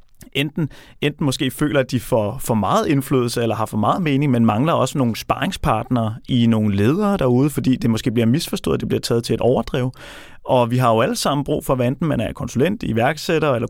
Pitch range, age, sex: 120-150 Hz, 30-49, male